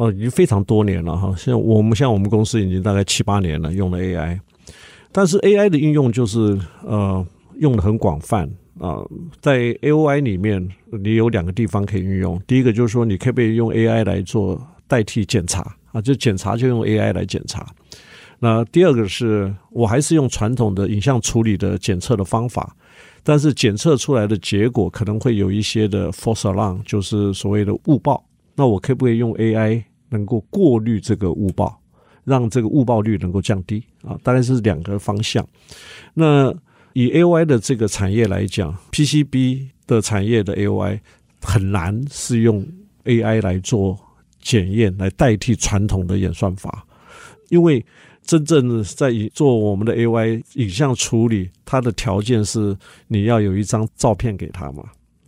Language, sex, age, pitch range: Chinese, male, 50-69, 100-125 Hz